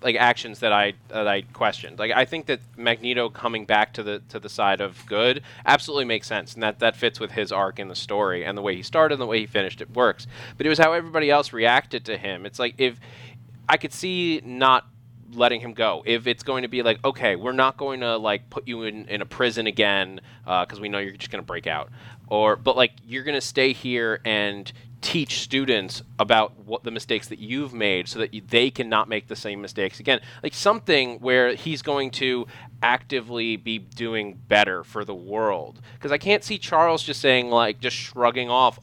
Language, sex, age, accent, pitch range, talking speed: English, male, 20-39, American, 115-130 Hz, 225 wpm